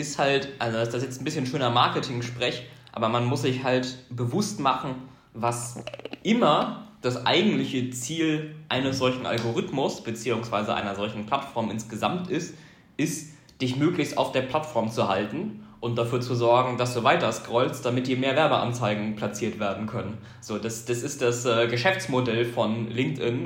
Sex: male